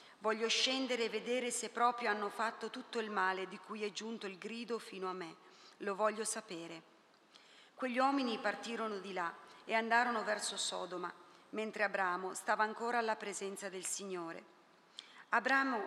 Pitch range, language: 190-230 Hz, Italian